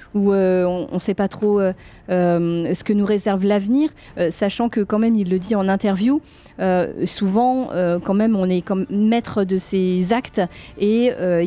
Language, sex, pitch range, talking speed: French, female, 180-225 Hz, 200 wpm